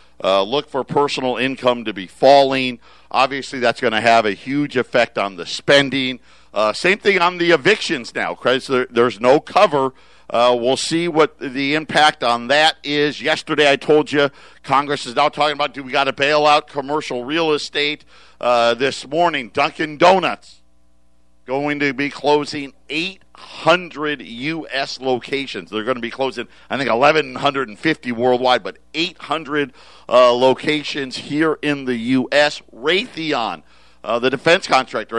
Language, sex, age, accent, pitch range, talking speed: English, male, 50-69, American, 125-160 Hz, 155 wpm